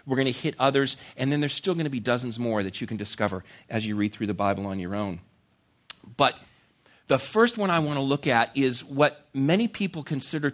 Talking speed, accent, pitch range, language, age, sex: 235 wpm, American, 115-165 Hz, English, 50-69, male